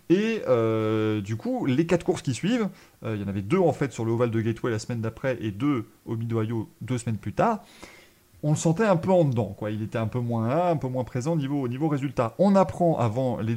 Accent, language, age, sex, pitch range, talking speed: French, French, 30-49, male, 115-160 Hz, 260 wpm